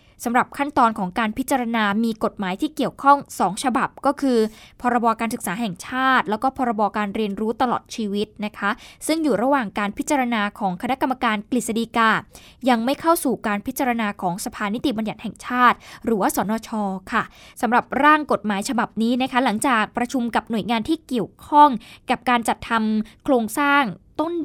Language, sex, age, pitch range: Thai, female, 10-29, 215-280 Hz